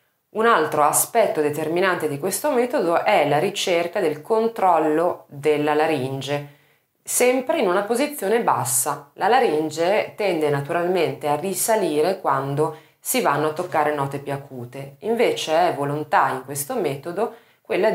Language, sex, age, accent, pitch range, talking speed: Italian, female, 30-49, native, 135-180 Hz, 135 wpm